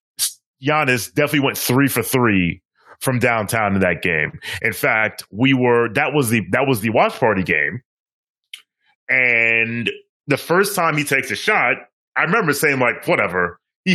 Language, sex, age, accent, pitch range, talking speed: English, male, 30-49, American, 110-150 Hz, 165 wpm